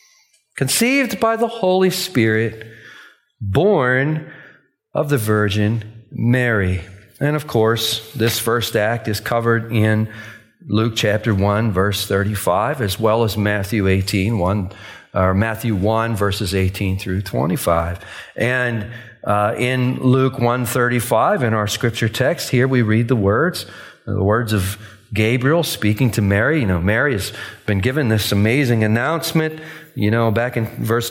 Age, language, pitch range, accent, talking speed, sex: 40-59, English, 110-140 Hz, American, 140 wpm, male